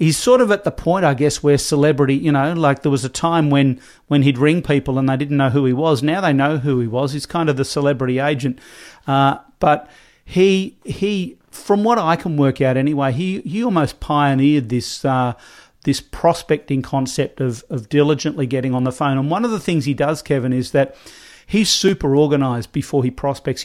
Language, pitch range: English, 135-160 Hz